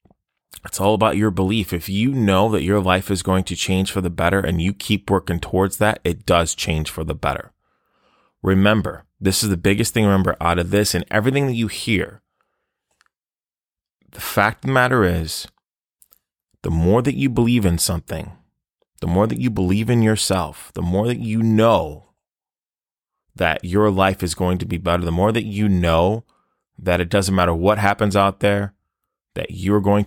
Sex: male